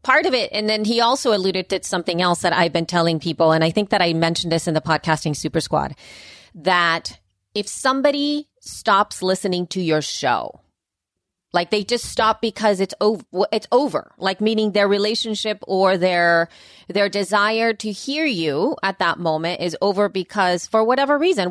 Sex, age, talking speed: female, 30-49, 180 wpm